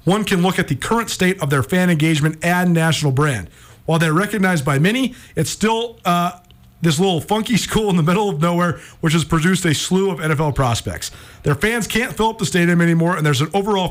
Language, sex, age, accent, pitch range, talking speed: English, male, 40-59, American, 150-185 Hz, 220 wpm